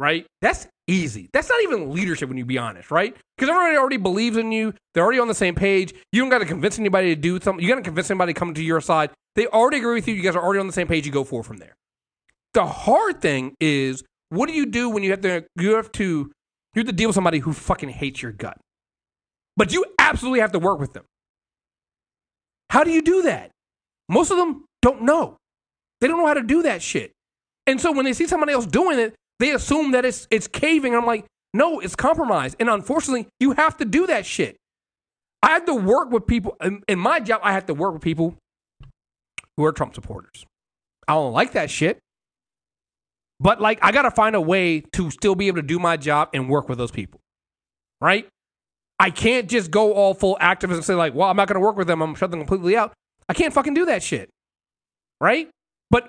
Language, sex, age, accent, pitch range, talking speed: English, male, 30-49, American, 160-245 Hz, 230 wpm